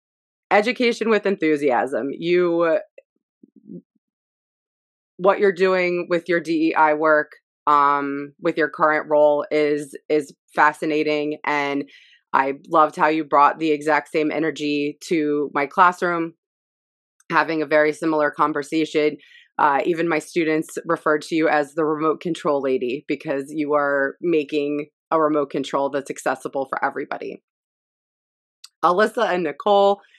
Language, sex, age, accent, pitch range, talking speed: English, female, 20-39, American, 145-175 Hz, 125 wpm